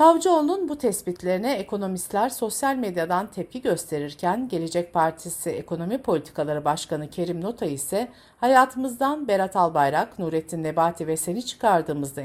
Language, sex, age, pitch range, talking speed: Turkish, female, 60-79, 160-255 Hz, 120 wpm